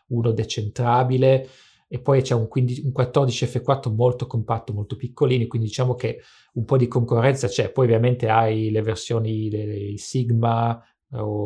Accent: Italian